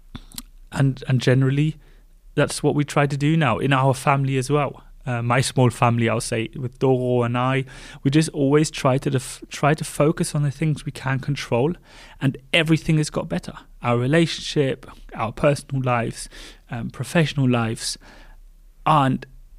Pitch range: 130-155 Hz